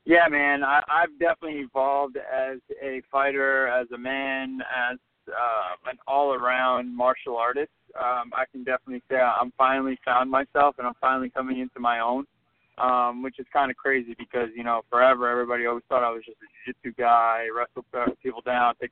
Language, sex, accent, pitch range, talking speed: English, male, American, 125-150 Hz, 180 wpm